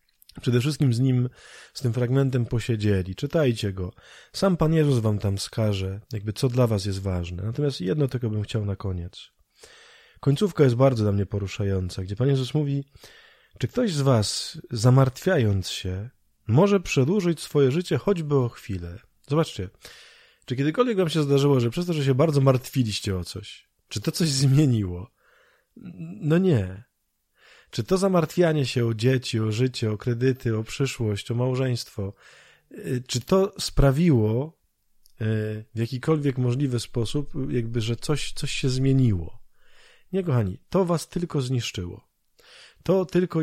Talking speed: 150 wpm